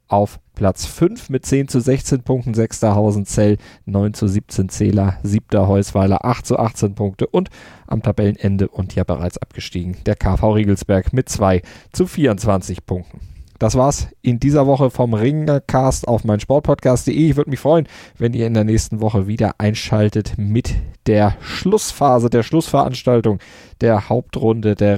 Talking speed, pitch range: 155 wpm, 100-125 Hz